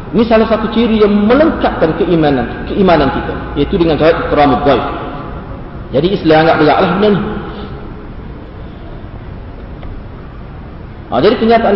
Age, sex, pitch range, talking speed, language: 40-59, male, 145-200 Hz, 110 wpm, Malay